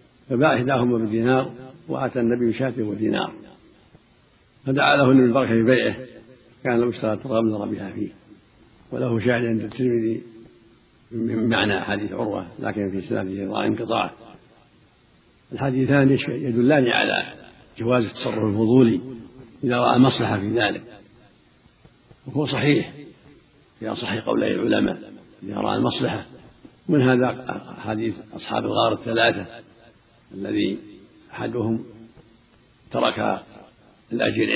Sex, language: male, Arabic